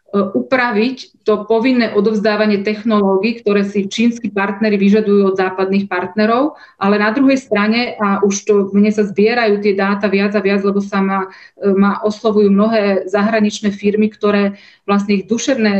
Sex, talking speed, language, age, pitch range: female, 150 wpm, Slovak, 30-49, 200-220 Hz